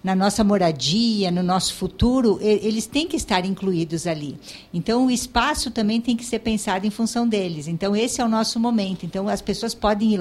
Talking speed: 200 wpm